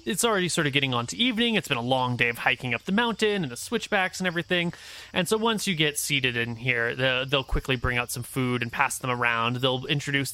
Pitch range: 125-175 Hz